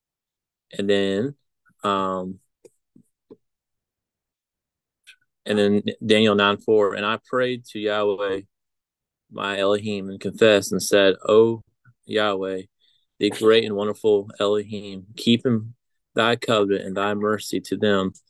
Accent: American